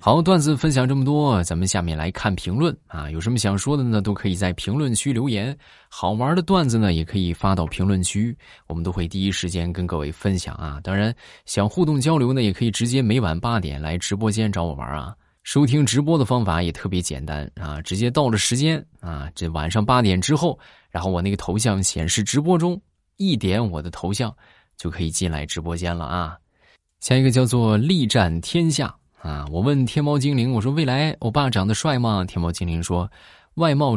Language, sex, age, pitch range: Chinese, male, 20-39, 85-130 Hz